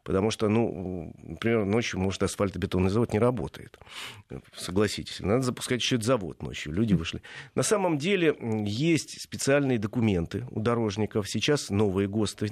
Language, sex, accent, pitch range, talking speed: Russian, male, native, 100-125 Hz, 145 wpm